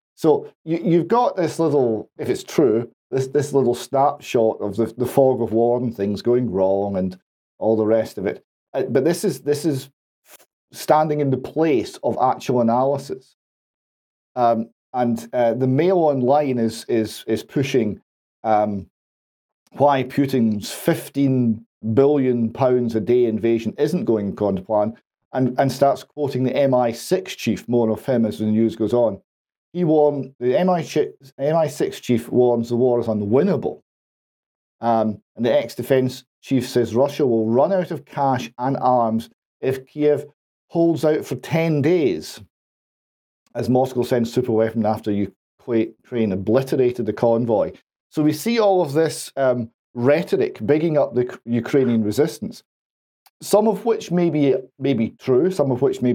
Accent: British